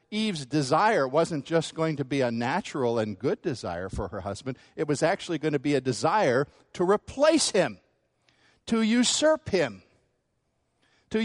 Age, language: 50-69, English